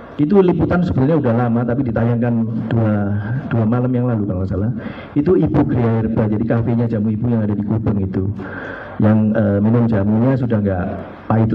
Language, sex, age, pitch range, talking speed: Indonesian, male, 50-69, 105-125 Hz, 170 wpm